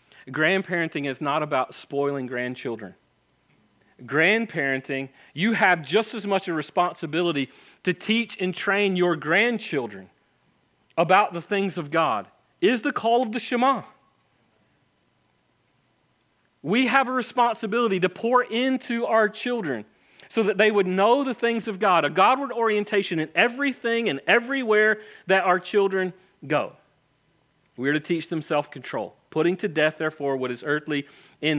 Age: 40-59